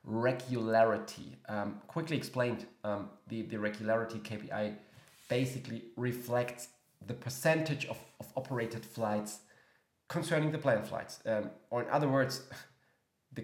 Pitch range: 110-135 Hz